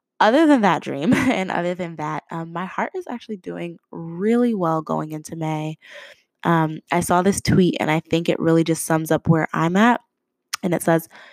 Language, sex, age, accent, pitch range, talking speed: English, female, 20-39, American, 155-190 Hz, 200 wpm